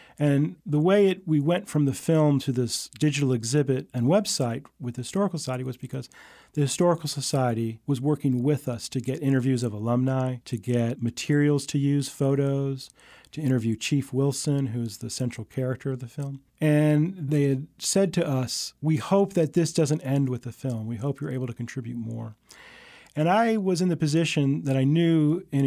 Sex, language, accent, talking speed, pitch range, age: male, English, American, 190 wpm, 120-145 Hz, 40-59